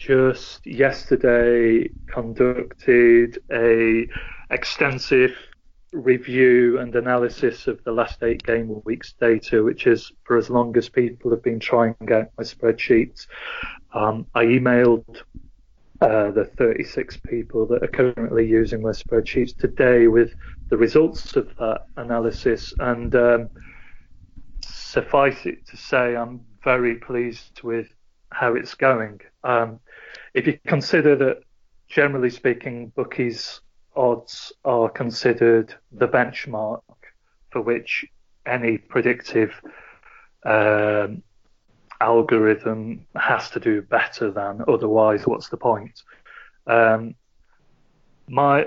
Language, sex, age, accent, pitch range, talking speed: English, male, 30-49, British, 110-125 Hz, 110 wpm